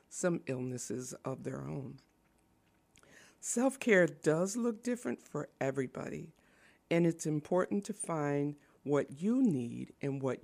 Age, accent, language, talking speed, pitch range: 50-69, American, English, 120 wpm, 140-195 Hz